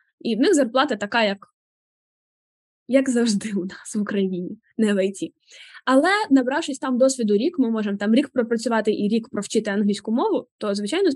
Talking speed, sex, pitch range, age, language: 170 wpm, female, 215-280 Hz, 10-29, Ukrainian